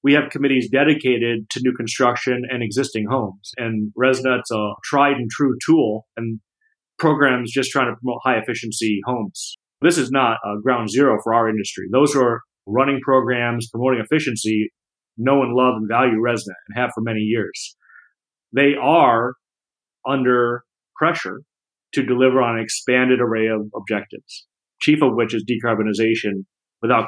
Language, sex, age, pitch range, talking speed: English, male, 30-49, 110-135 Hz, 155 wpm